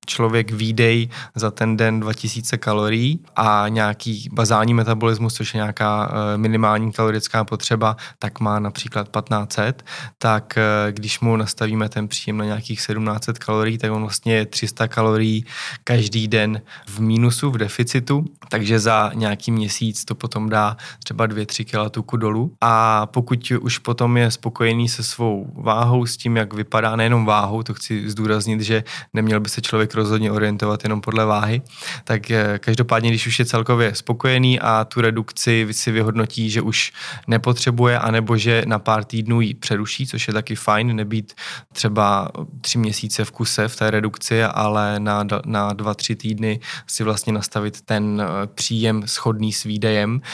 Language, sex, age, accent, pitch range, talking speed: Czech, male, 20-39, native, 105-115 Hz, 155 wpm